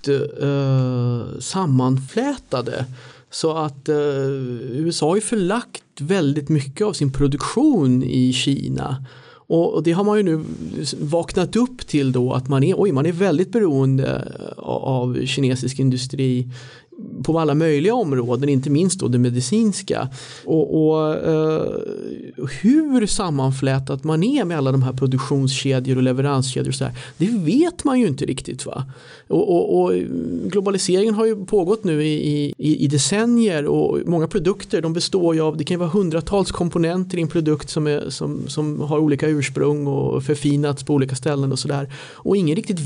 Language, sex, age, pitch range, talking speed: Swedish, male, 30-49, 135-185 Hz, 155 wpm